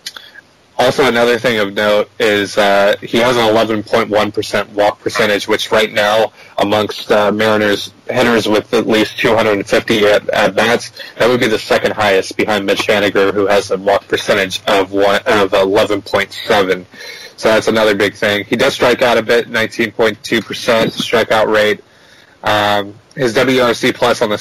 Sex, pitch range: male, 100-115 Hz